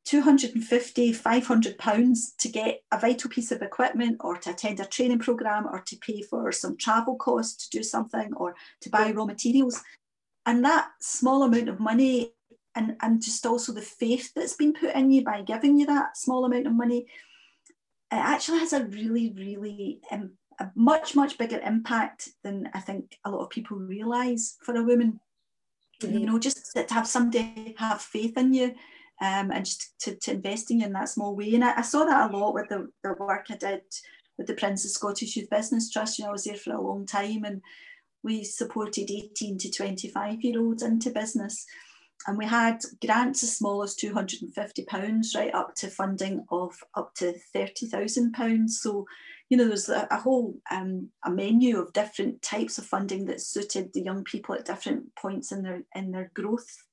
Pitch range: 205-250 Hz